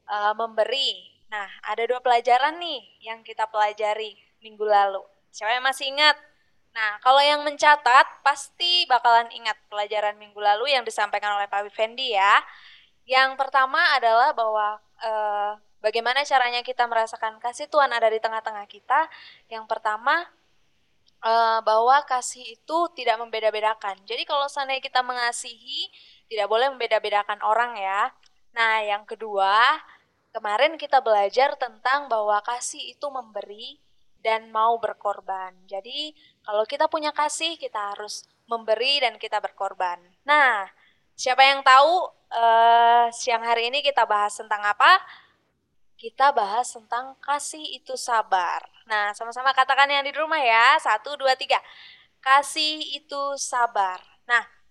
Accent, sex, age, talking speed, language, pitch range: native, female, 10-29, 135 wpm, Indonesian, 215-275 Hz